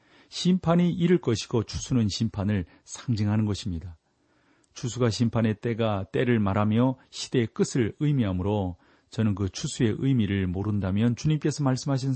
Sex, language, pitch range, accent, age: male, Korean, 100-130 Hz, native, 40-59